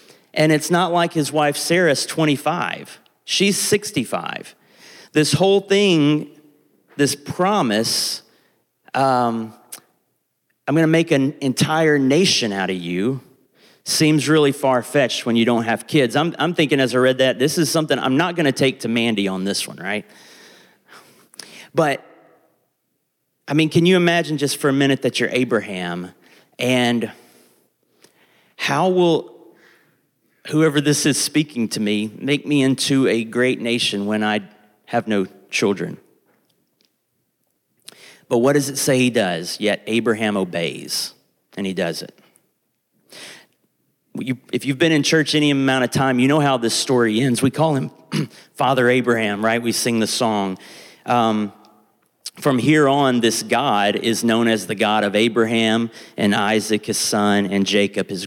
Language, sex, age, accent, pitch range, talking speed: English, male, 30-49, American, 110-150 Hz, 150 wpm